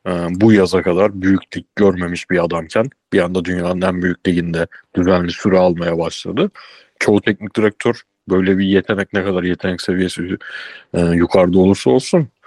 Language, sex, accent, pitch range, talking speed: Turkish, male, native, 95-110 Hz, 140 wpm